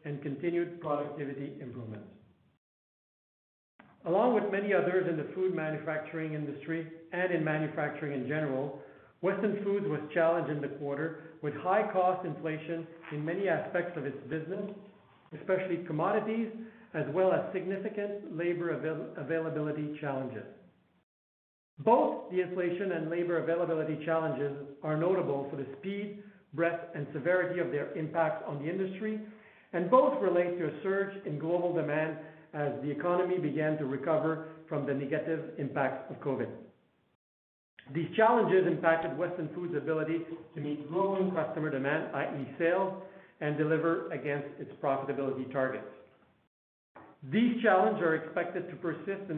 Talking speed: 135 wpm